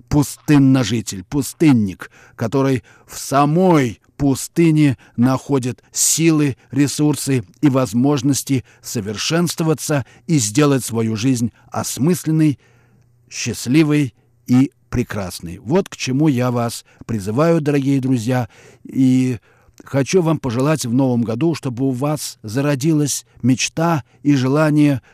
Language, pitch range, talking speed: Russian, 120-150 Hz, 100 wpm